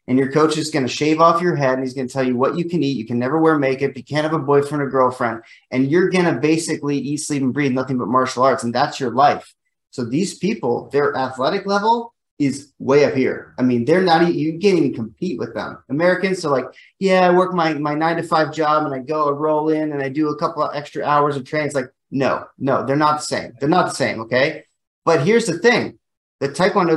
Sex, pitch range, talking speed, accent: male, 140-180 Hz, 260 wpm, American